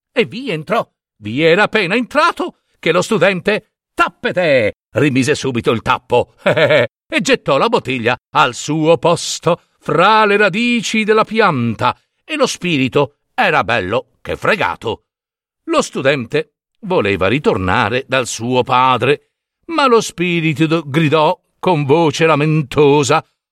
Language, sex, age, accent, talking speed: Italian, male, 60-79, native, 130 wpm